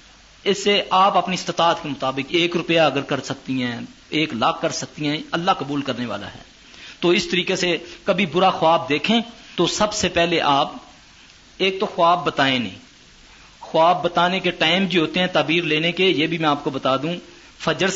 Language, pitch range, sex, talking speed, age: Urdu, 160-200 Hz, male, 195 wpm, 50-69